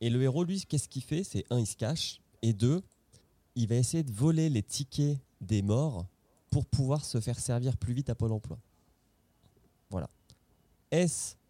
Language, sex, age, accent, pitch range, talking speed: French, male, 20-39, French, 100-130 Hz, 185 wpm